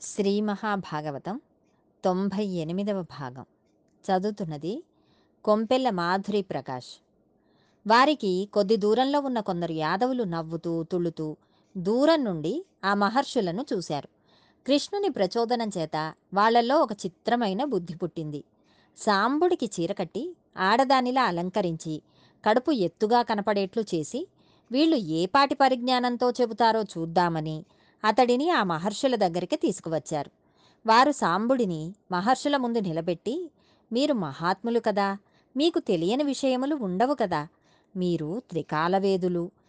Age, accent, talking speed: 20-39, native, 95 wpm